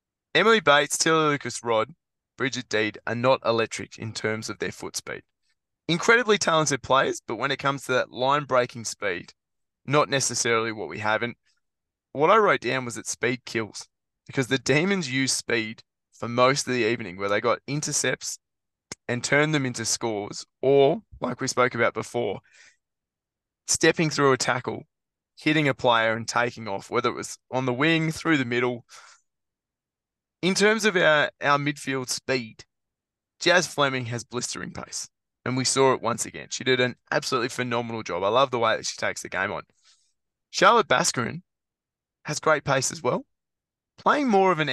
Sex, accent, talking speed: male, Australian, 175 wpm